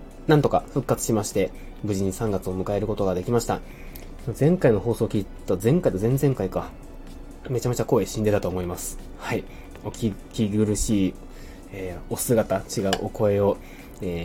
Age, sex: 20-39, male